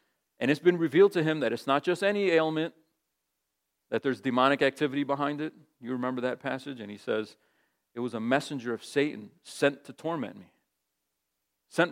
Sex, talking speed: male, 180 wpm